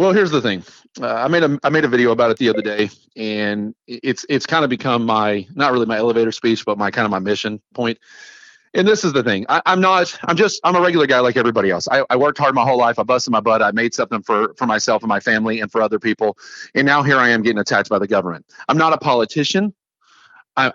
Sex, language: male, English